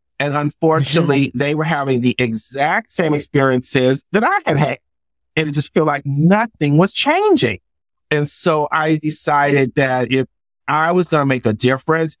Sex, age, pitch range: male, 50-69, 125-150 Hz